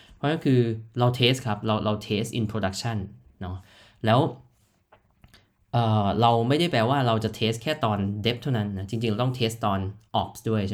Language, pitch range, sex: Thai, 100-125 Hz, male